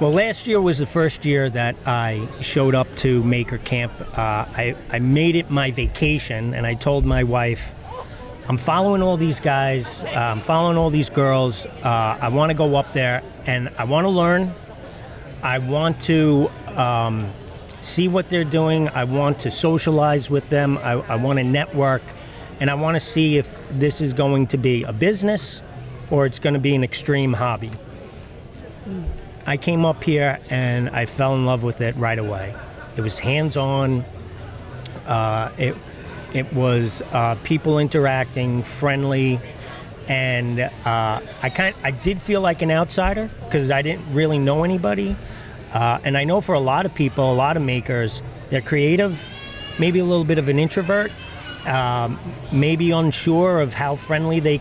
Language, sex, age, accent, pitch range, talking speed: English, male, 40-59, American, 120-155 Hz, 175 wpm